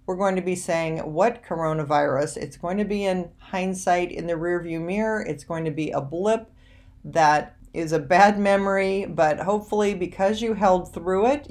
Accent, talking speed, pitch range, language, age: American, 185 wpm, 160-205 Hz, English, 40-59